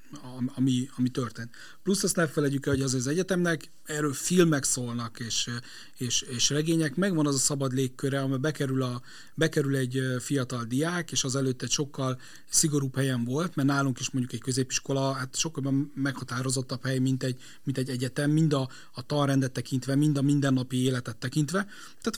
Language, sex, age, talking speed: Hungarian, male, 40-59, 170 wpm